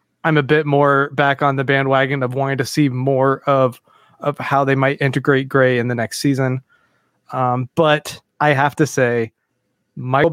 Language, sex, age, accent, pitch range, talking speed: English, male, 20-39, American, 135-155 Hz, 180 wpm